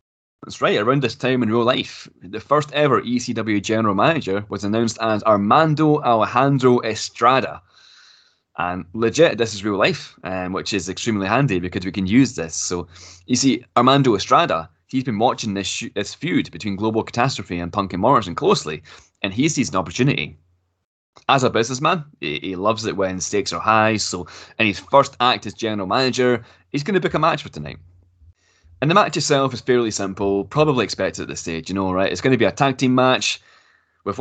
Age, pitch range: 20-39, 90-125 Hz